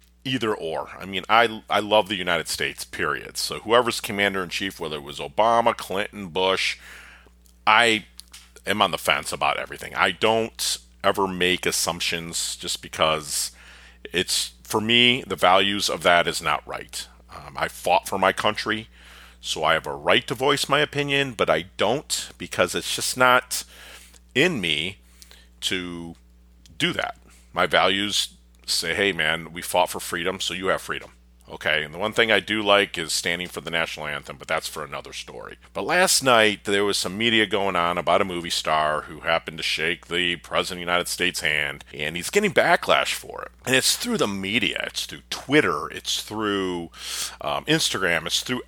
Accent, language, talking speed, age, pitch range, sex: American, English, 185 wpm, 40-59, 65-110 Hz, male